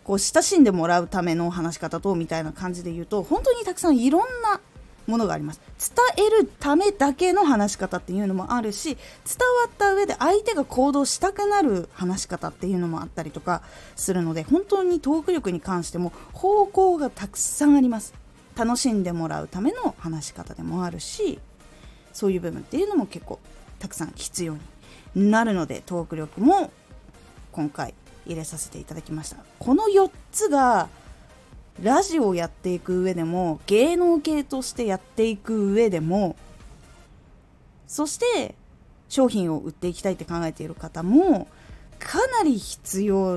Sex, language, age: female, Japanese, 20-39